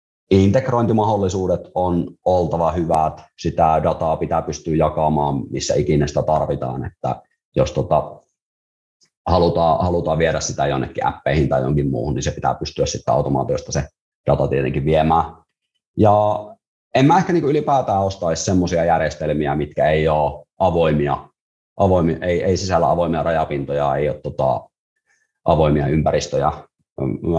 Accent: native